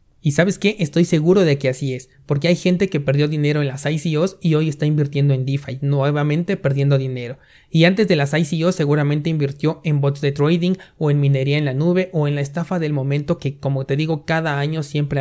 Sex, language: male, Spanish